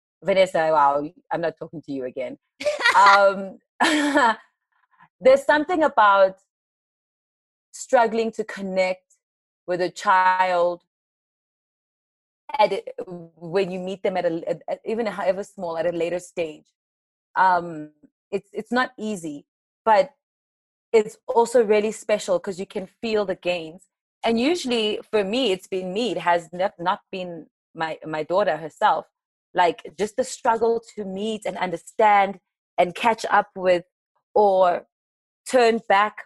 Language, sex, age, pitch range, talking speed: English, female, 30-49, 175-220 Hz, 130 wpm